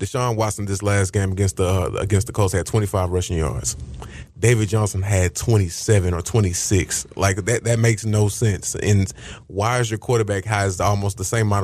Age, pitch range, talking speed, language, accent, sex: 20-39, 100-120 Hz, 190 wpm, English, American, male